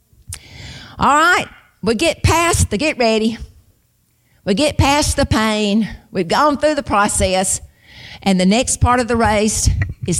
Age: 50-69